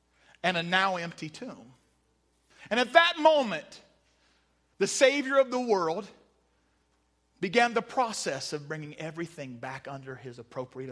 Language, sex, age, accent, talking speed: English, male, 40-59, American, 130 wpm